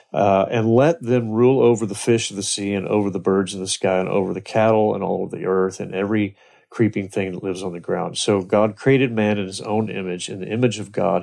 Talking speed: 260 wpm